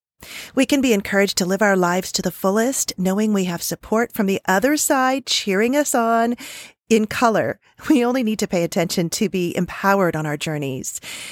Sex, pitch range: female, 175-245 Hz